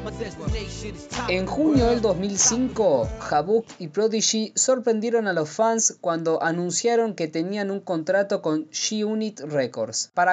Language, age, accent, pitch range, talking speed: Spanish, 20-39, Argentinian, 165-220 Hz, 130 wpm